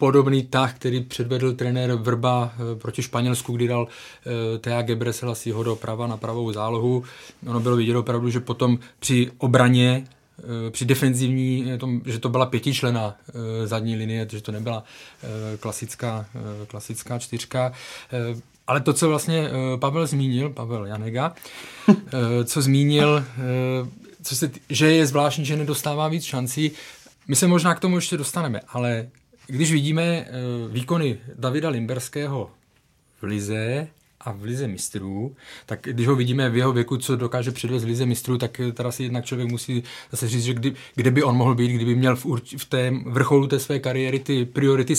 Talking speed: 170 wpm